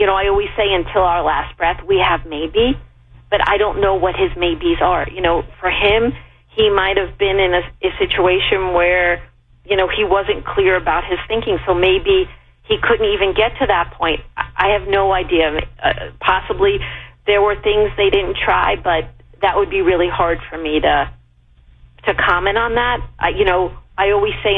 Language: English